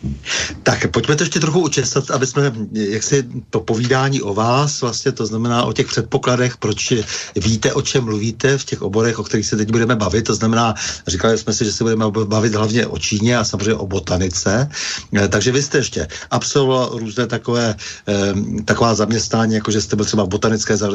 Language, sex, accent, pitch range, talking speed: Czech, male, native, 105-120 Hz, 185 wpm